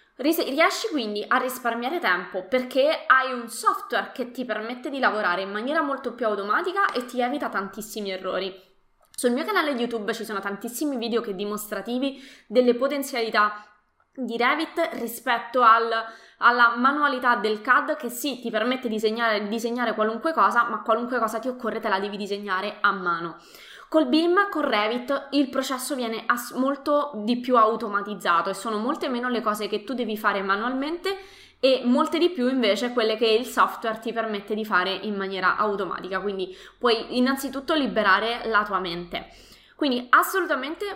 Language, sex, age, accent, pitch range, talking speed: Italian, female, 20-39, native, 210-275 Hz, 160 wpm